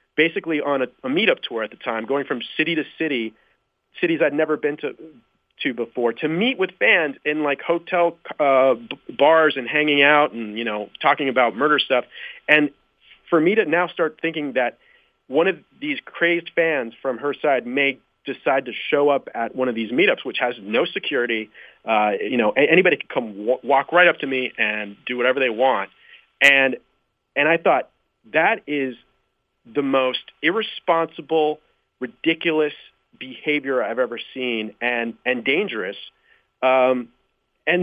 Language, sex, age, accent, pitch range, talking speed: English, male, 30-49, American, 130-160 Hz, 170 wpm